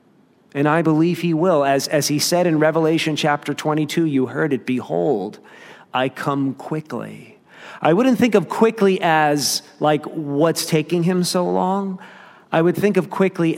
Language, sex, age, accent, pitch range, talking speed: English, male, 40-59, American, 125-165 Hz, 165 wpm